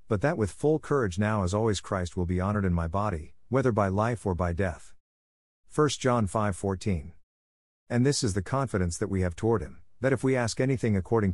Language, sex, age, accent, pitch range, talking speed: English, male, 50-69, American, 85-115 Hz, 215 wpm